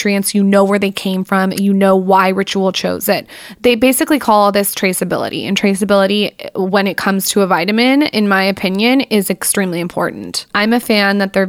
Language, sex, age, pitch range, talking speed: English, female, 20-39, 190-225 Hz, 190 wpm